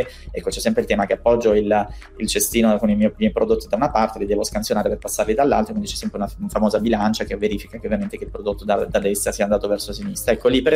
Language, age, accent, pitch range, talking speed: Italian, 20-39, native, 105-125 Hz, 280 wpm